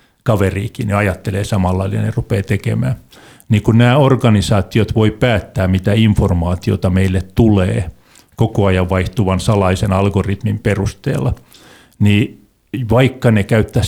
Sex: male